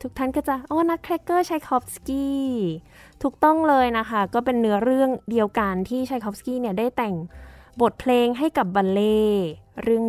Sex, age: female, 10-29